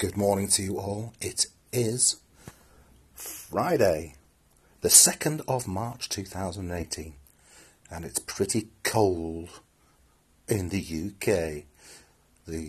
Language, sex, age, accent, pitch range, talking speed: English, male, 40-59, British, 85-110 Hz, 100 wpm